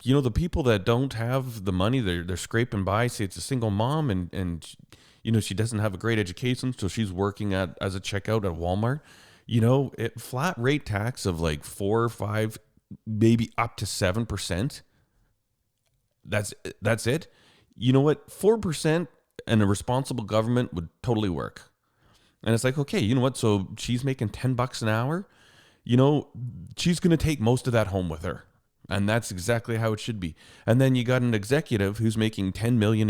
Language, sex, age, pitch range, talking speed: English, male, 30-49, 95-125 Hz, 195 wpm